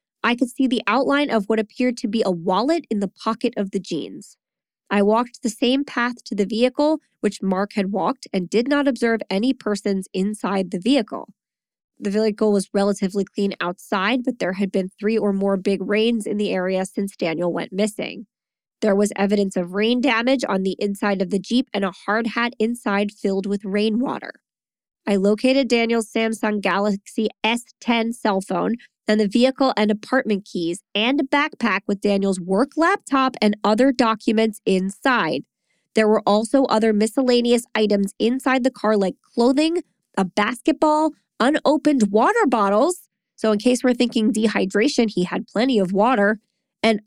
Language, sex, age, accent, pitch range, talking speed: English, female, 20-39, American, 200-250 Hz, 170 wpm